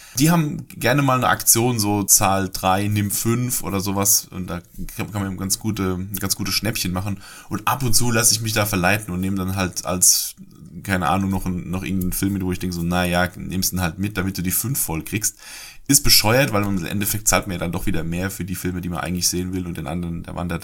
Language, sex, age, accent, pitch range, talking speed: German, male, 20-39, German, 90-115 Hz, 255 wpm